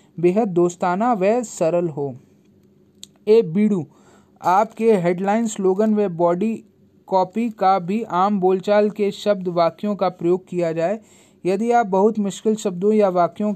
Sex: male